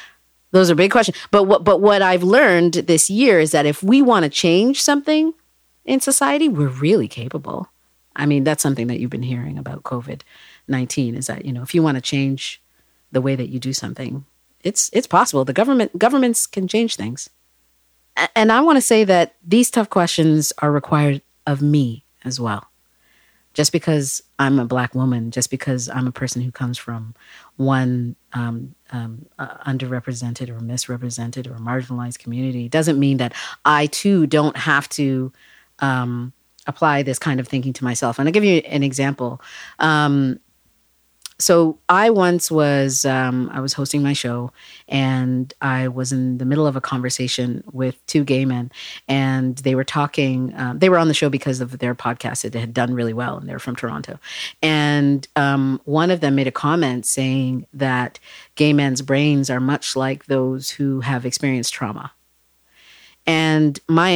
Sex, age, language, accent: female, 40-59, English, American